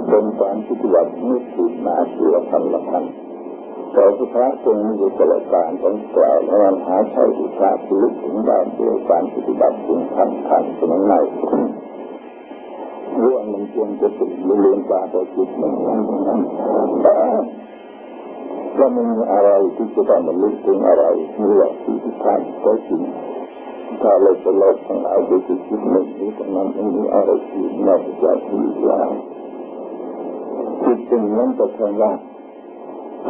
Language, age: Thai, 60-79